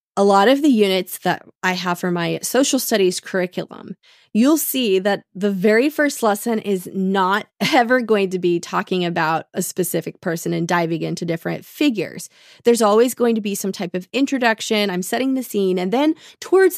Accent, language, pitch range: American, English, 180-235 Hz